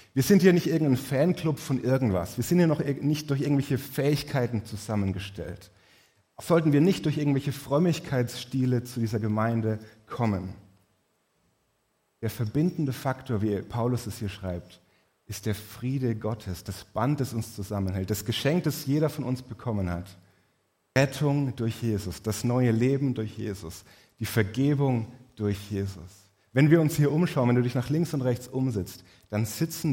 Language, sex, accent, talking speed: German, male, German, 160 wpm